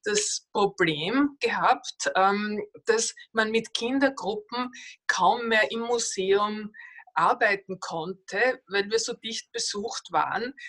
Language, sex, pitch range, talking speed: German, female, 195-245 Hz, 105 wpm